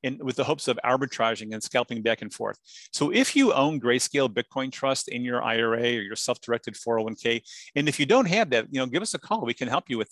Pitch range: 120-145 Hz